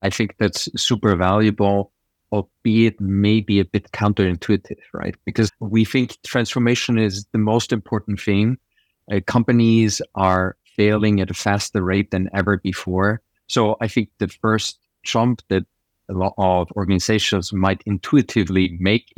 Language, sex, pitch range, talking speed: English, male, 100-120 Hz, 140 wpm